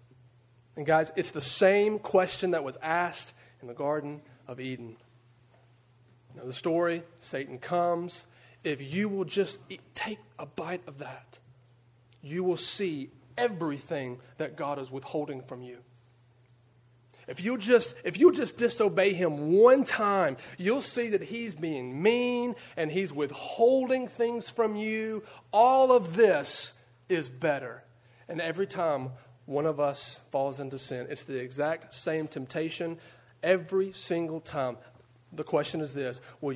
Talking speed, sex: 145 wpm, male